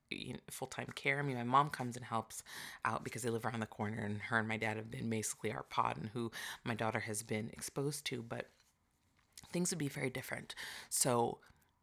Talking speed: 210 wpm